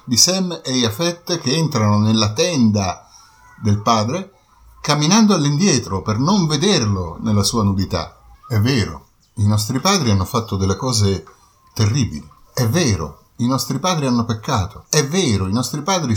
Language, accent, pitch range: Italian, native, 100-135 Hz